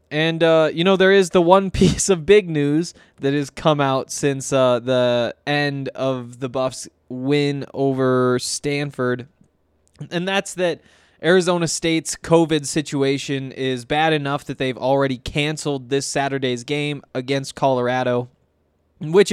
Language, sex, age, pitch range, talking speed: English, male, 20-39, 130-170 Hz, 145 wpm